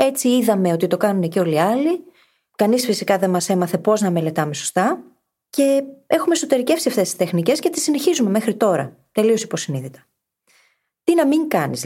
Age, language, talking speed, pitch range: 30-49, Greek, 175 wpm, 180-250 Hz